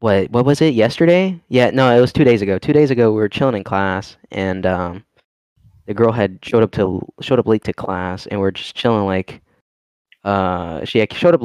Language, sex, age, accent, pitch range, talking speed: English, male, 10-29, American, 105-145 Hz, 230 wpm